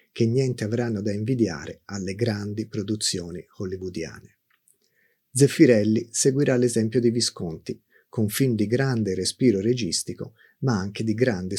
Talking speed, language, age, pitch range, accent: 125 wpm, Italian, 40-59, 105-130 Hz, native